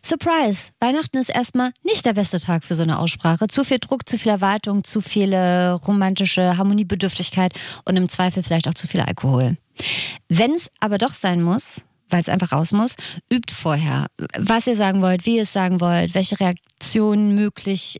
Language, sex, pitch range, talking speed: German, female, 170-210 Hz, 185 wpm